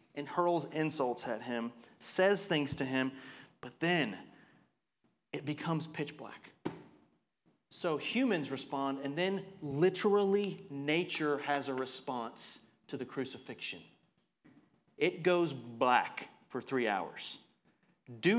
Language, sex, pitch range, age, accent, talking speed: English, male, 150-220 Hz, 30-49, American, 115 wpm